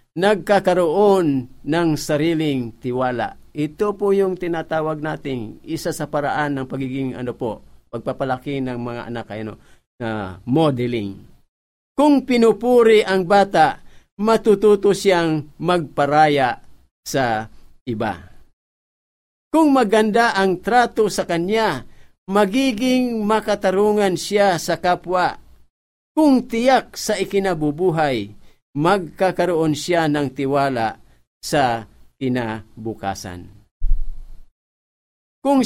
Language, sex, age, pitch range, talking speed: Filipino, male, 50-69, 120-200 Hz, 95 wpm